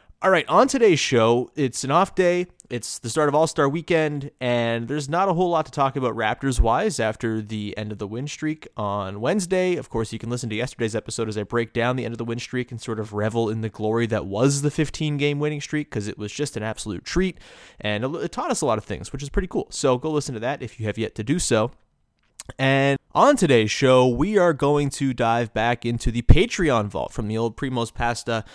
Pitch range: 110-150 Hz